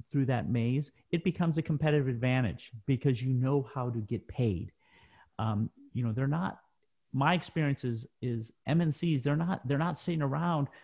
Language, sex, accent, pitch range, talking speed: English, male, American, 125-155 Hz, 170 wpm